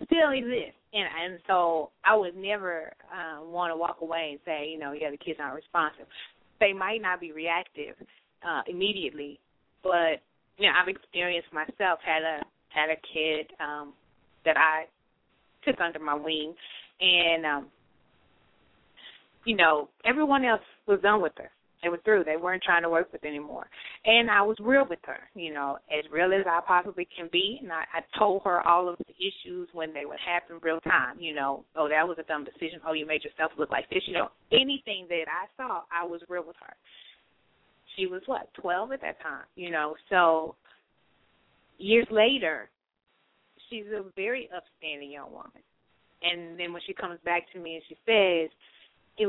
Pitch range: 160-205 Hz